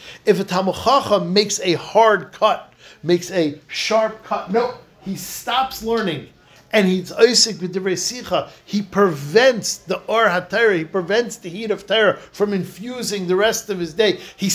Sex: male